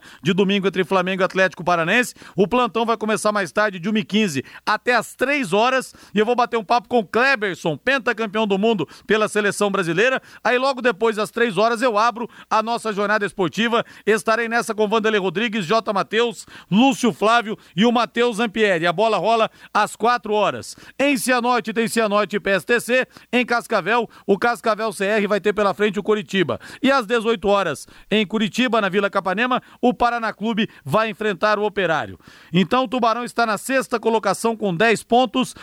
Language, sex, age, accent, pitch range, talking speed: Portuguese, male, 40-59, Brazilian, 200-235 Hz, 185 wpm